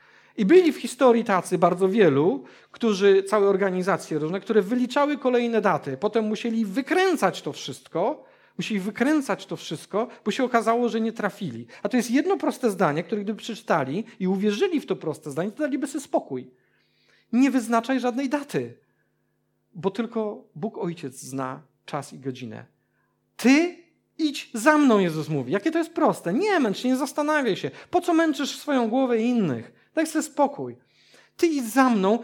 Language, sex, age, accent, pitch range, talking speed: Polish, male, 40-59, native, 200-270 Hz, 170 wpm